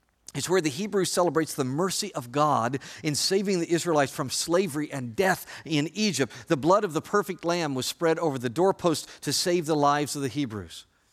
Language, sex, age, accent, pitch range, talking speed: English, male, 50-69, American, 115-165 Hz, 200 wpm